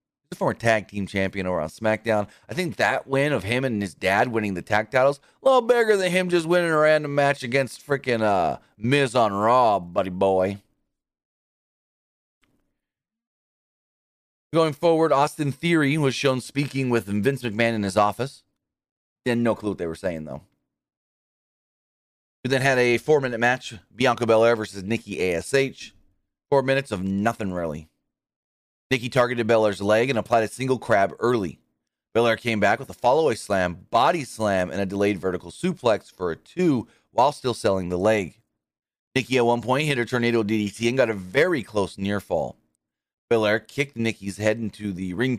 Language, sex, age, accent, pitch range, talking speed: English, male, 30-49, American, 100-130 Hz, 170 wpm